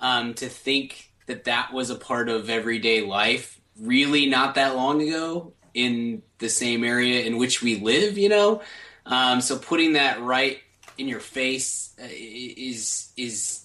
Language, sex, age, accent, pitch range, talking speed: English, male, 20-39, American, 115-145 Hz, 160 wpm